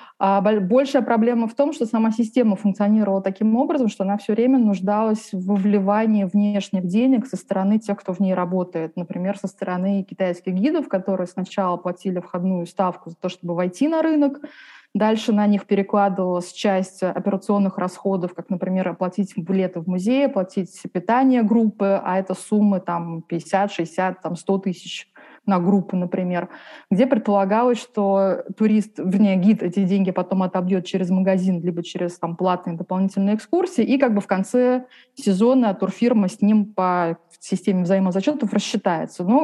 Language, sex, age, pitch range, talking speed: Russian, female, 20-39, 185-225 Hz, 150 wpm